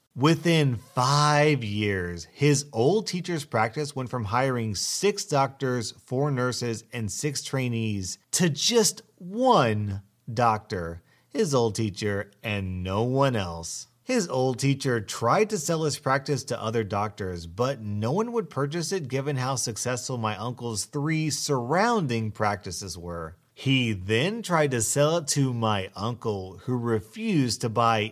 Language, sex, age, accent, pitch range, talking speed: English, male, 30-49, American, 110-150 Hz, 145 wpm